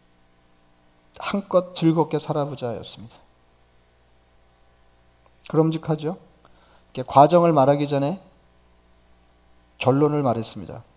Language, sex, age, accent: Korean, male, 40-59, native